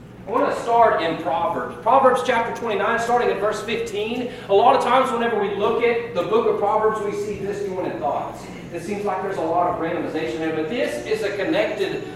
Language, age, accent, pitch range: English, 30-49, American, 190-225 Hz